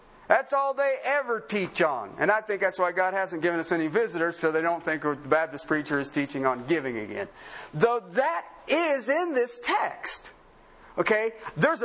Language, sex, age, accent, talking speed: English, male, 50-69, American, 185 wpm